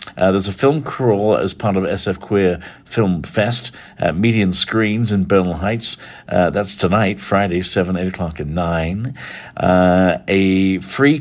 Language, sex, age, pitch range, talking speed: English, male, 50-69, 90-110 Hz, 160 wpm